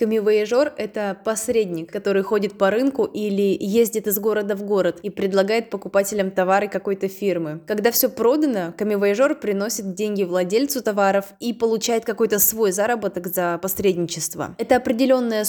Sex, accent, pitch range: female, native, 195-220 Hz